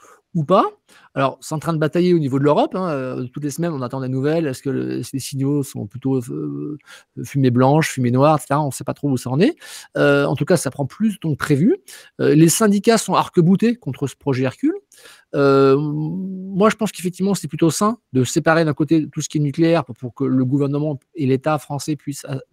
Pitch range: 130-170 Hz